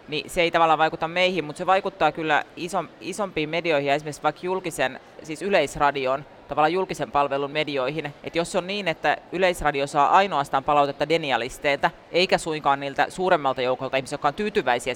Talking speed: 175 wpm